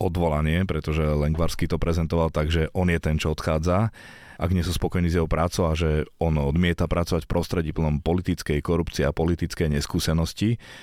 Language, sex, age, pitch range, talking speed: Slovak, male, 30-49, 75-85 Hz, 170 wpm